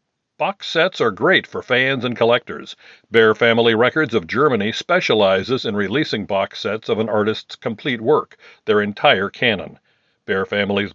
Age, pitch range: 50-69, 110-145 Hz